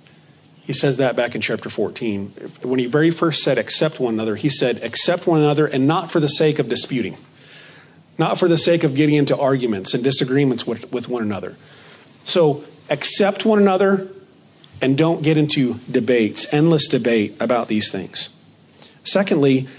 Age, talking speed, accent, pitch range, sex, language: 40-59, 170 wpm, American, 145-190 Hz, male, English